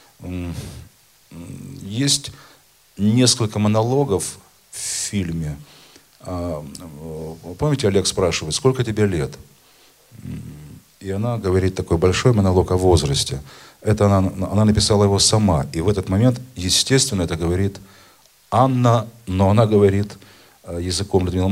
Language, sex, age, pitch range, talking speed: Russian, male, 40-59, 85-115 Hz, 105 wpm